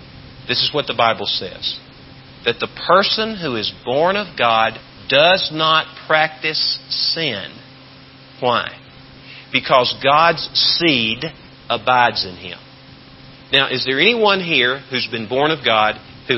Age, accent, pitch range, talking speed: 50-69, American, 115-145 Hz, 130 wpm